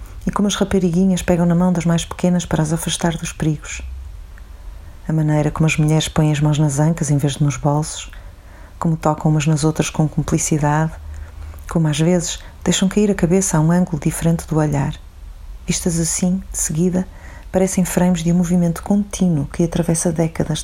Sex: female